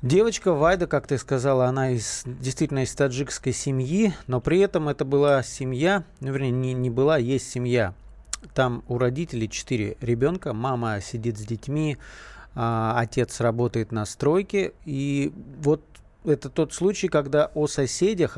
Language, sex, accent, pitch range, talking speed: Russian, male, native, 120-150 Hz, 150 wpm